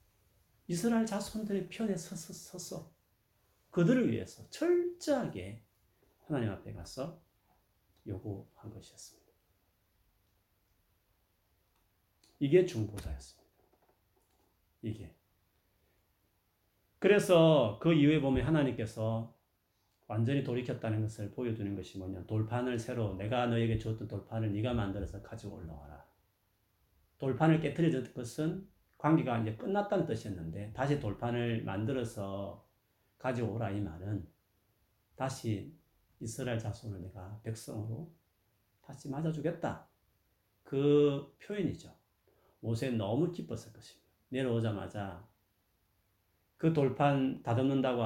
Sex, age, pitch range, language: male, 40-59, 100-135 Hz, Korean